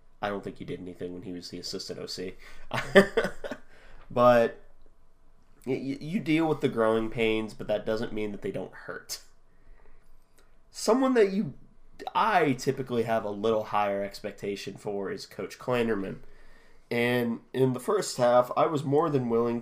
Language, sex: English, male